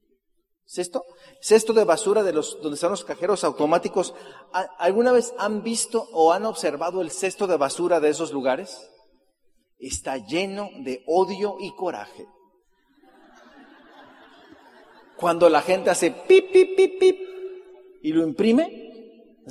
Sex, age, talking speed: male, 40-59, 130 wpm